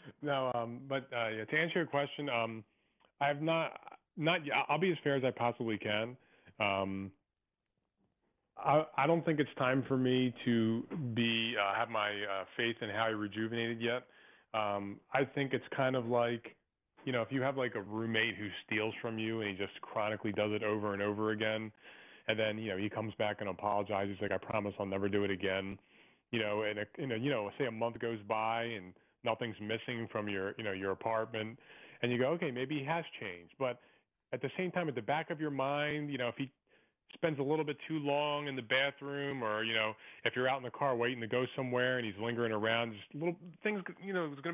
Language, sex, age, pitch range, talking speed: English, male, 30-49, 110-140 Hz, 220 wpm